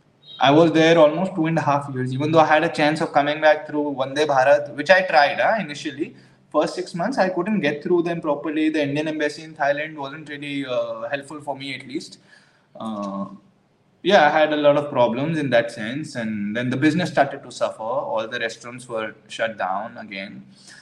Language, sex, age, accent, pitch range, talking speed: English, male, 20-39, Indian, 120-155 Hz, 215 wpm